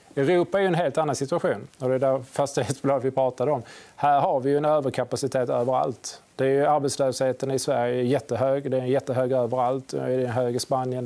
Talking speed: 210 wpm